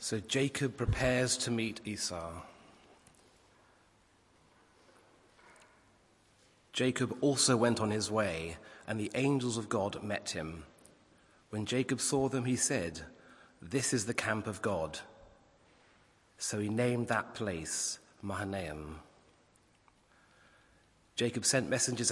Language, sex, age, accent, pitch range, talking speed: English, male, 30-49, British, 95-120 Hz, 110 wpm